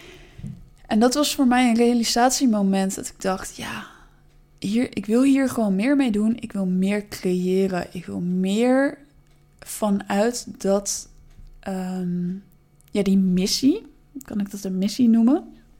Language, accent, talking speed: Dutch, Dutch, 135 wpm